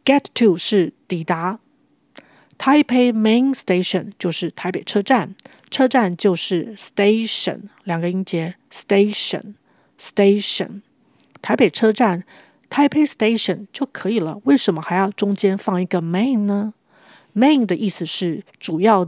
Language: Chinese